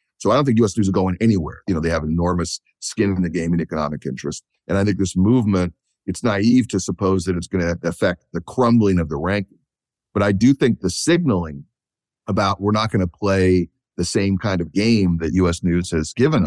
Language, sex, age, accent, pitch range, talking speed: English, male, 50-69, American, 90-120 Hz, 225 wpm